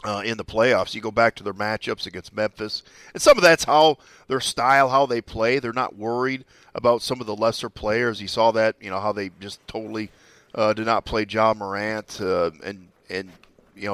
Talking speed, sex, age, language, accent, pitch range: 215 wpm, male, 40-59, English, American, 105-120 Hz